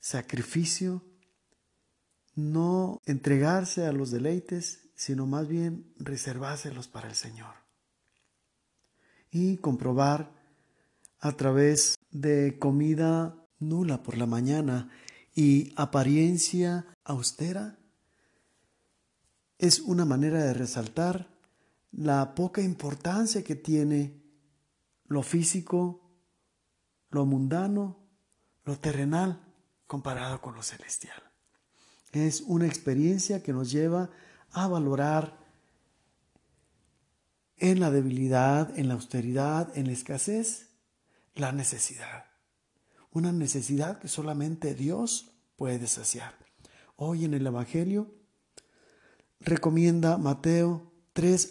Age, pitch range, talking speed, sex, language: 50-69, 135-175 Hz, 90 wpm, male, Spanish